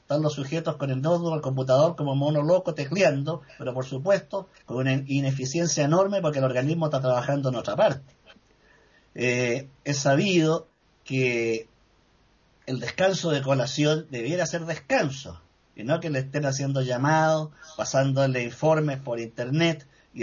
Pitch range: 130-165 Hz